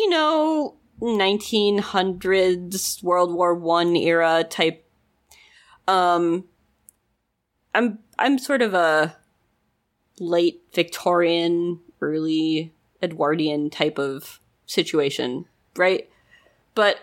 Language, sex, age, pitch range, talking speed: English, female, 20-39, 160-205 Hz, 80 wpm